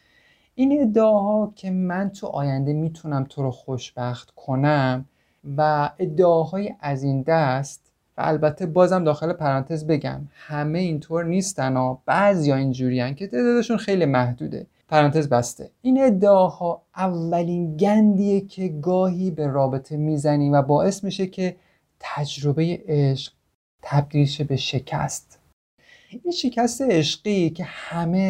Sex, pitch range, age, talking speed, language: male, 135-185 Hz, 30-49, 125 wpm, Persian